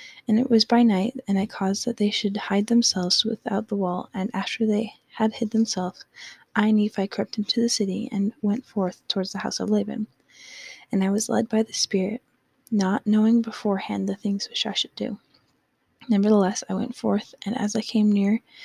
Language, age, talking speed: English, 20-39, 195 wpm